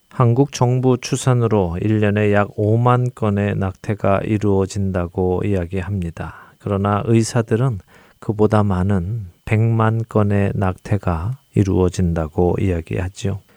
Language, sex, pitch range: Korean, male, 95-120 Hz